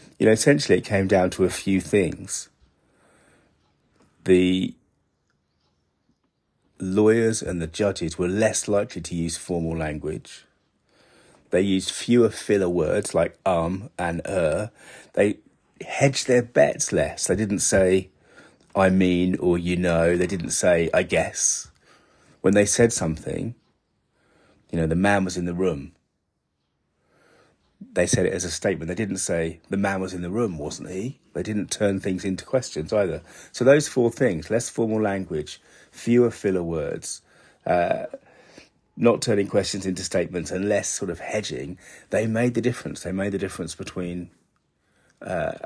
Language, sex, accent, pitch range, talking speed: English, male, British, 90-110 Hz, 150 wpm